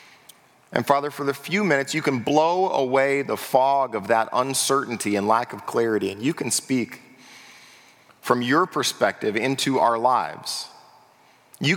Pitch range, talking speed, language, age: 115-145 Hz, 155 wpm, English, 30-49